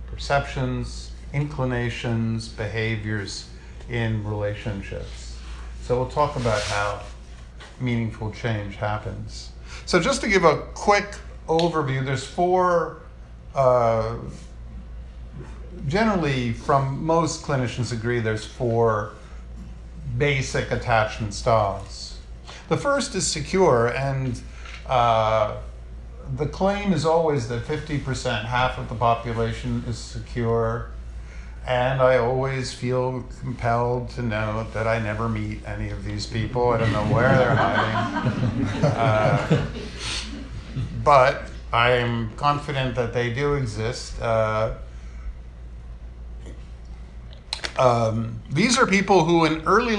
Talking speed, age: 105 wpm, 50-69